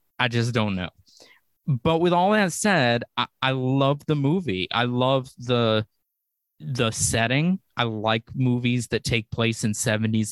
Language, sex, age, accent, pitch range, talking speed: English, male, 20-39, American, 105-130 Hz, 155 wpm